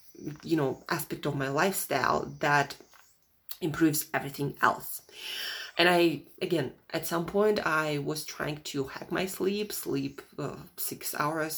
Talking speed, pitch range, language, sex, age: 140 wpm, 155-200 Hz, English, female, 30-49